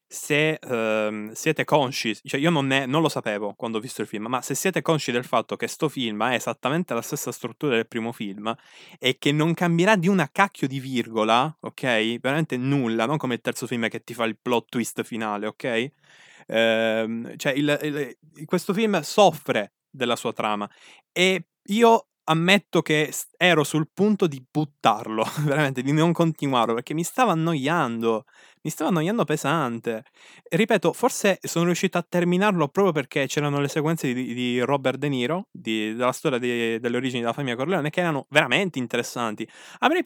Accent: native